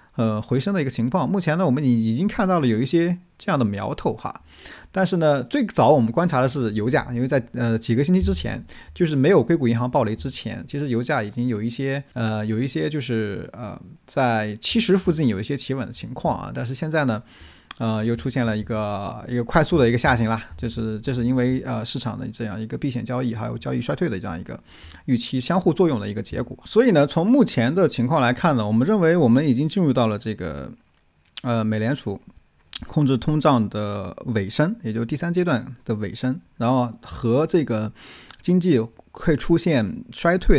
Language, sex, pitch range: Chinese, male, 115-140 Hz